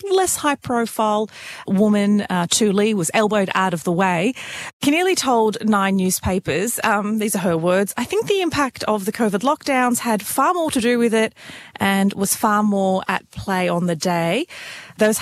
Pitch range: 190-260 Hz